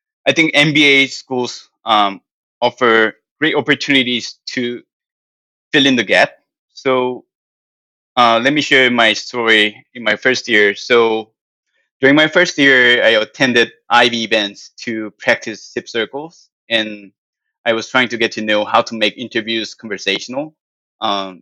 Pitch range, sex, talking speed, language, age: 110-135 Hz, male, 145 wpm, English, 20-39